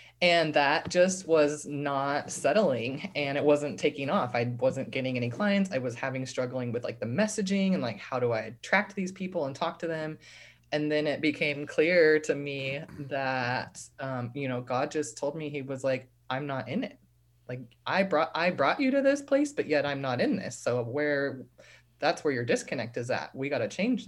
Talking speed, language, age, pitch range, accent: 210 wpm, English, 20-39, 125-150 Hz, American